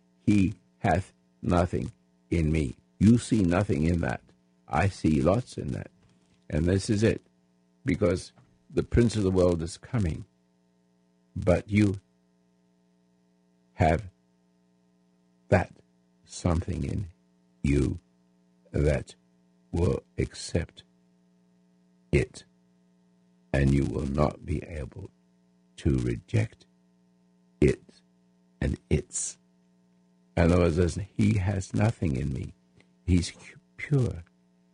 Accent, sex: American, male